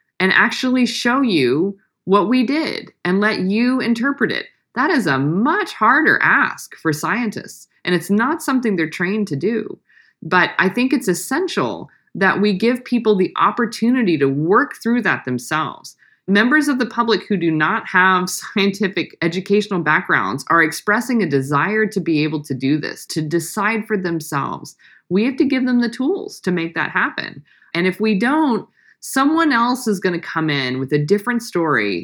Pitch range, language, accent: 160-225 Hz, English, American